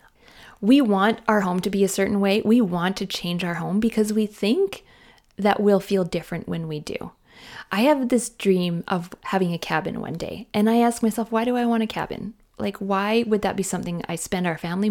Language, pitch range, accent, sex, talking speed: English, 180-220 Hz, American, female, 220 wpm